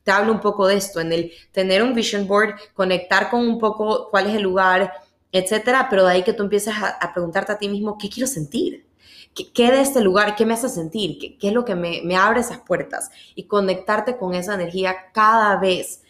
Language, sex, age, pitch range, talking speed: English, female, 20-39, 175-205 Hz, 230 wpm